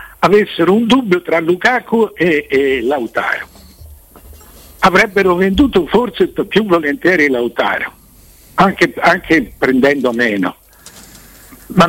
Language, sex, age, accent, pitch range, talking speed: Italian, male, 60-79, native, 110-175 Hz, 95 wpm